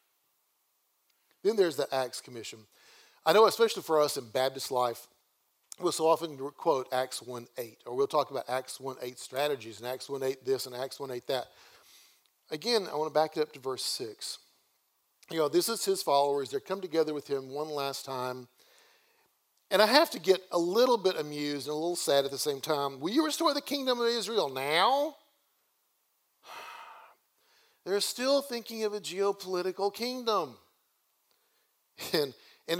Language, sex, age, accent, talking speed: English, male, 40-59, American, 170 wpm